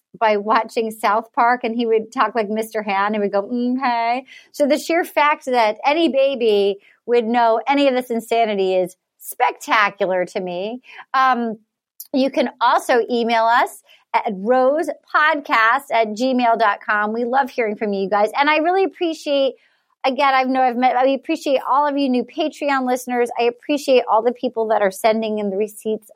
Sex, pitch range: female, 215-280 Hz